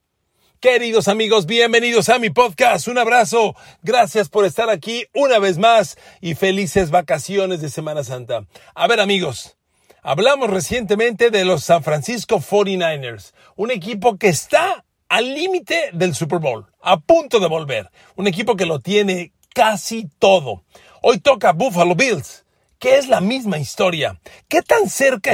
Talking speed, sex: 150 wpm, male